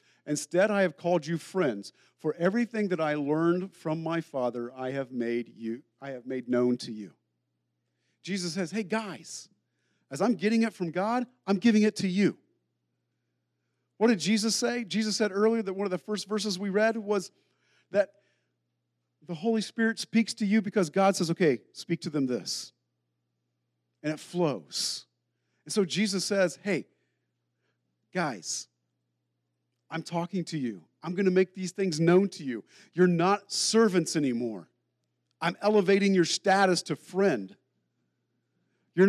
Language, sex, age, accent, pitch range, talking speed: English, male, 50-69, American, 120-200 Hz, 160 wpm